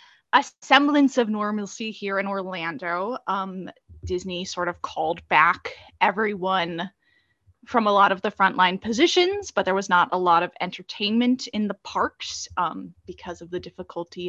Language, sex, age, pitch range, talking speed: English, female, 20-39, 180-265 Hz, 155 wpm